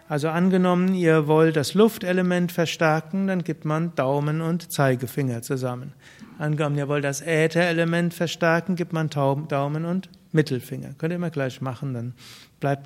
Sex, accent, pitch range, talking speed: male, German, 140-175 Hz, 150 wpm